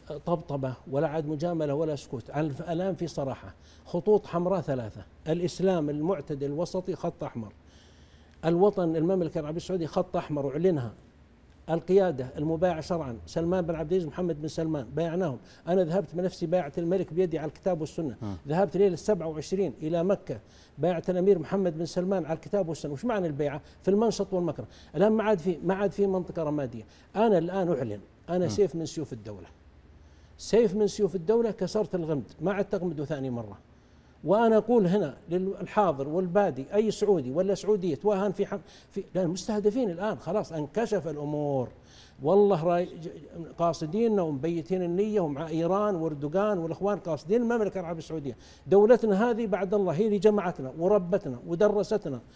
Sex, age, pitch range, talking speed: male, 60-79, 150-195 Hz, 145 wpm